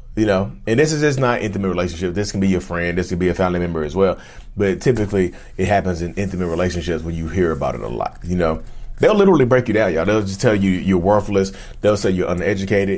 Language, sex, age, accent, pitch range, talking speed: English, male, 30-49, American, 85-105 Hz, 250 wpm